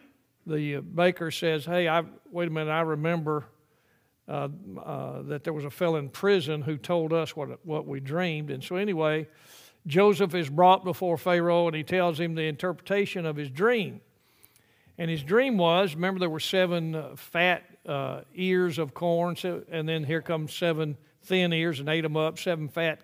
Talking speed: 185 wpm